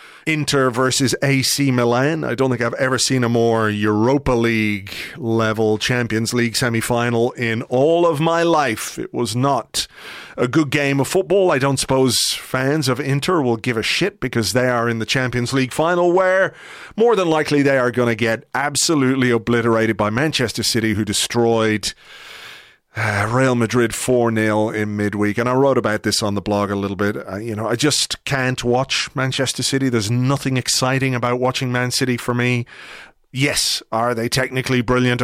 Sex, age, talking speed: male, 40-59, 180 wpm